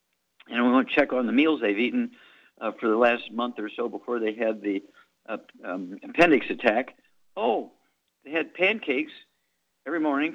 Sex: male